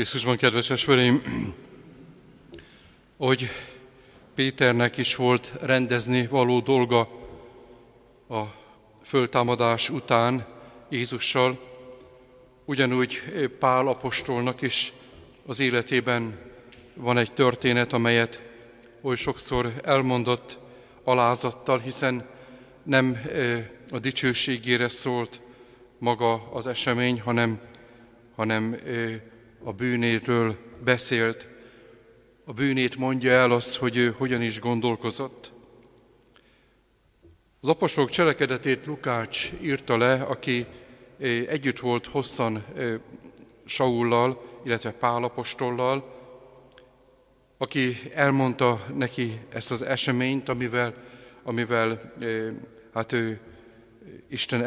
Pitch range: 120-130 Hz